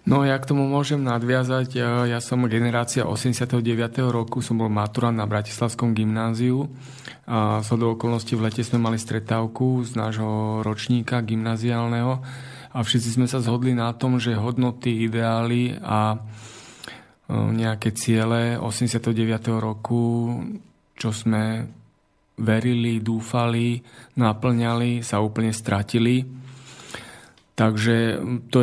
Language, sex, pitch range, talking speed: Slovak, male, 115-125 Hz, 120 wpm